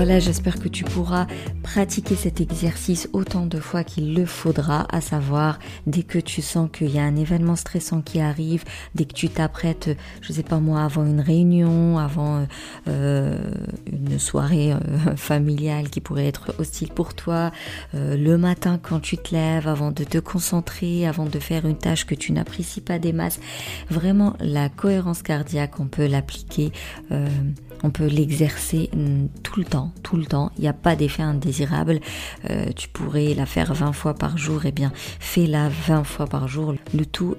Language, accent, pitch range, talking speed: French, French, 145-165 Hz, 185 wpm